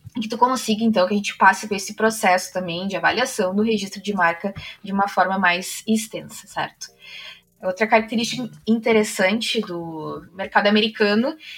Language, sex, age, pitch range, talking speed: Portuguese, female, 20-39, 200-240 Hz, 160 wpm